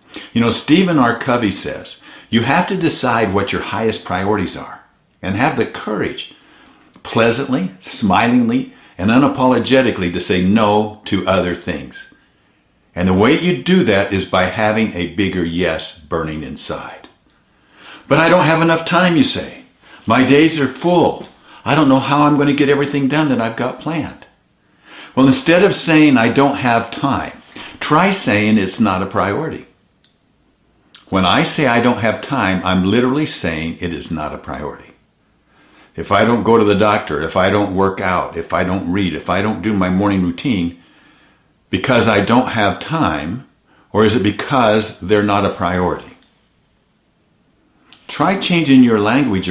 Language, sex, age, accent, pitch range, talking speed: English, male, 60-79, American, 95-135 Hz, 165 wpm